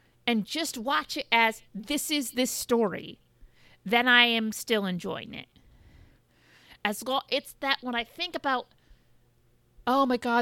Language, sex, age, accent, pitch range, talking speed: English, female, 30-49, American, 185-255 Hz, 150 wpm